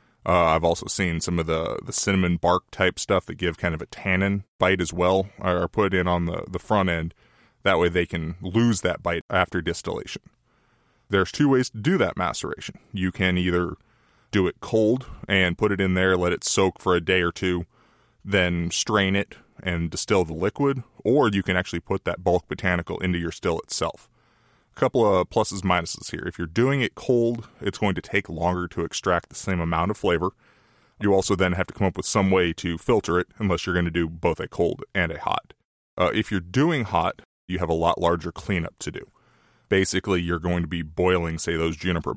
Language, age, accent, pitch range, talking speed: English, 20-39, American, 85-100 Hz, 215 wpm